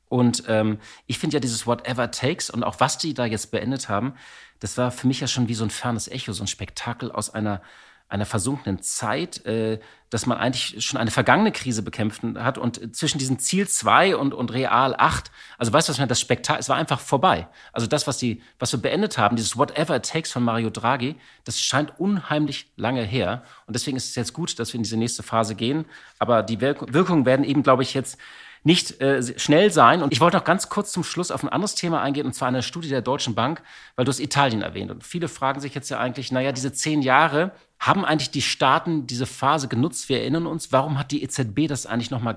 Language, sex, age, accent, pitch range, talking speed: German, male, 40-59, German, 115-145 Hz, 230 wpm